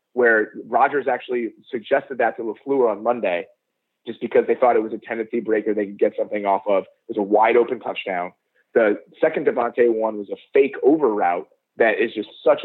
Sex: male